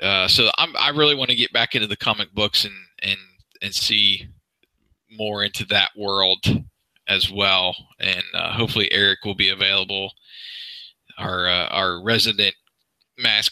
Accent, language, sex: American, English, male